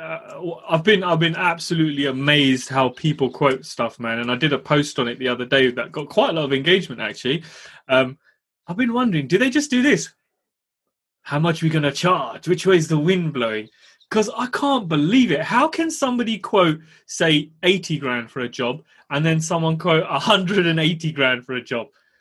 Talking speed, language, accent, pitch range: 205 wpm, English, British, 140-215 Hz